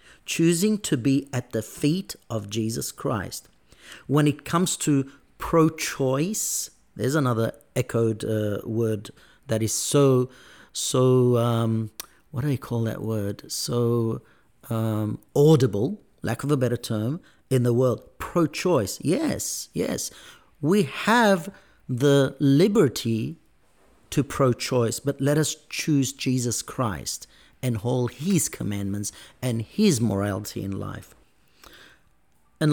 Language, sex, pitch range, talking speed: English, male, 110-145 Hz, 120 wpm